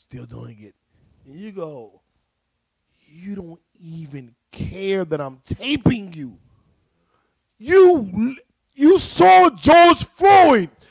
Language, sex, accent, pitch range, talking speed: English, male, American, 135-210 Hz, 105 wpm